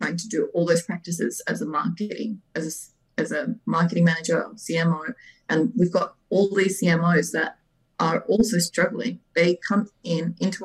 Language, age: English, 20-39